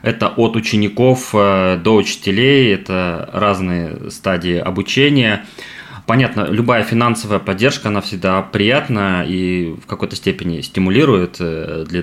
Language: Russian